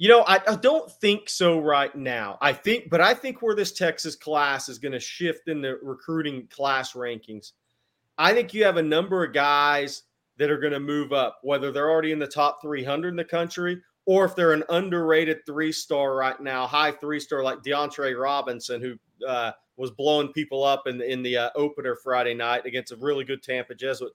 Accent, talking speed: American, 205 wpm